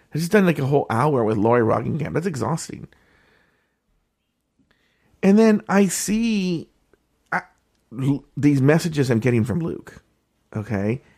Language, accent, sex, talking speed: English, American, male, 125 wpm